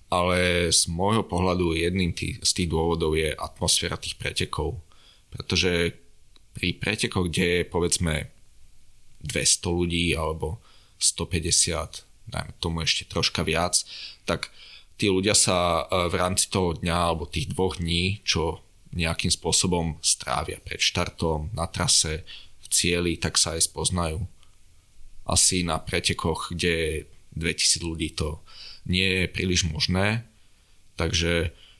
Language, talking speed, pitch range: Slovak, 125 wpm, 85-95 Hz